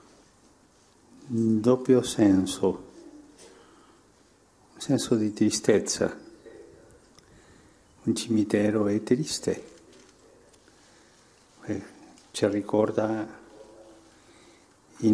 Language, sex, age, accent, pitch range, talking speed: Italian, male, 50-69, native, 105-115 Hz, 55 wpm